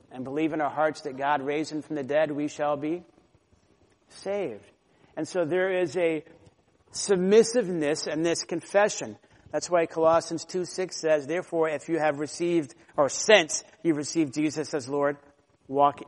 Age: 50-69